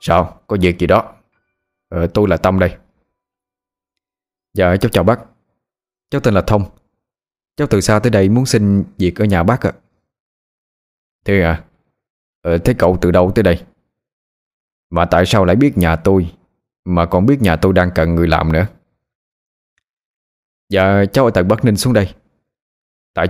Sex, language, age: male, Vietnamese, 20-39